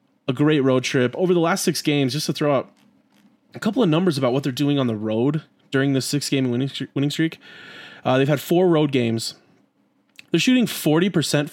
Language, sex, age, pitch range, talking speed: English, male, 20-39, 125-160 Hz, 210 wpm